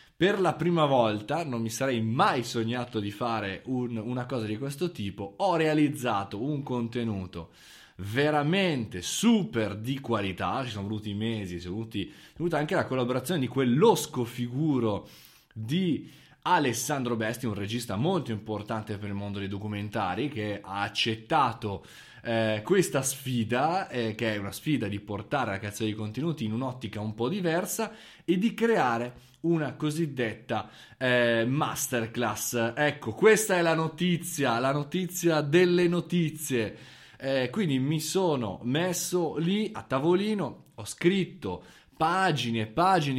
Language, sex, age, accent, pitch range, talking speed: Italian, male, 20-39, native, 115-160 Hz, 140 wpm